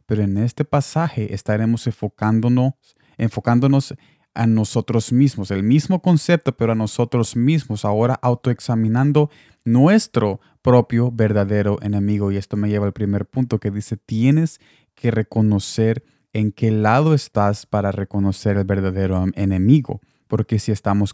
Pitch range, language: 105-135 Hz, Spanish